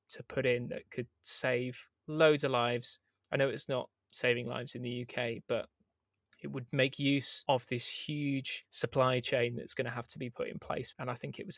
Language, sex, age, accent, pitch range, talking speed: English, male, 20-39, British, 125-145 Hz, 220 wpm